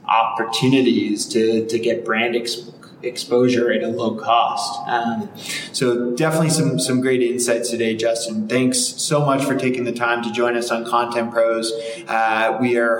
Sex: male